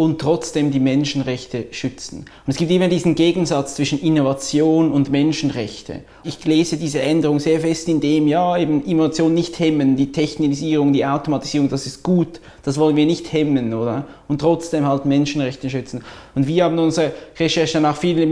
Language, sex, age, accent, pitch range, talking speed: German, male, 20-39, Austrian, 135-155 Hz, 175 wpm